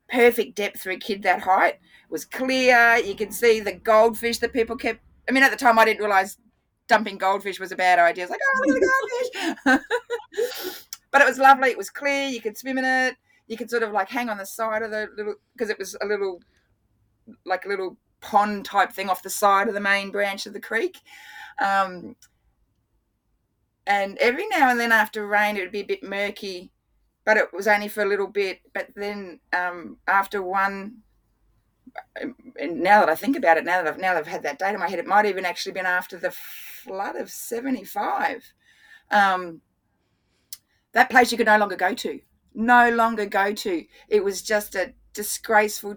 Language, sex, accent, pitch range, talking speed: English, female, Australian, 195-240 Hz, 210 wpm